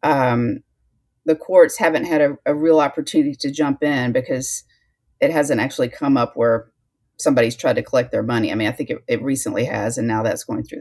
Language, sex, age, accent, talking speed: English, female, 40-59, American, 210 wpm